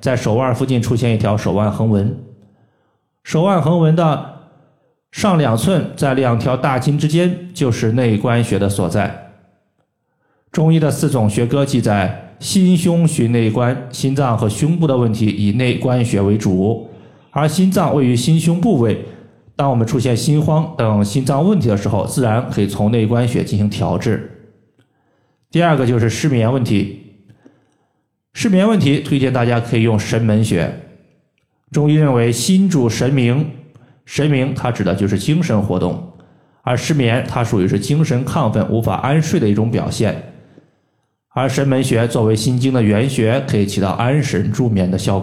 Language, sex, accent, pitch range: Chinese, male, native, 110-150 Hz